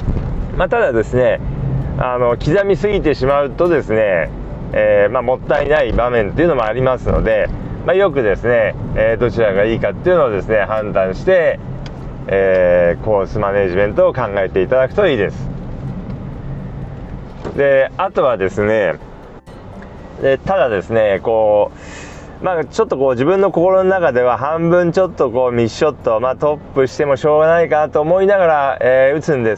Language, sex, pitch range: Japanese, male, 120-175 Hz